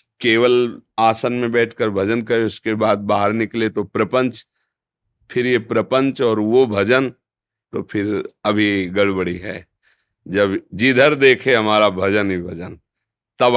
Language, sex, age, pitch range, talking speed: Hindi, male, 50-69, 100-120 Hz, 135 wpm